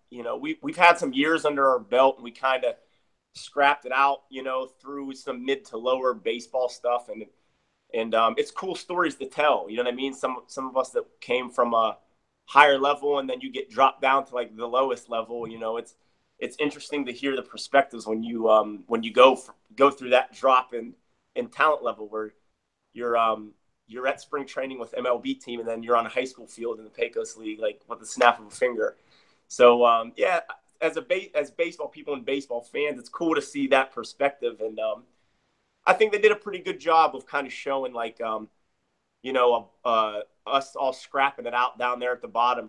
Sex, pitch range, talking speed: male, 115-145 Hz, 225 wpm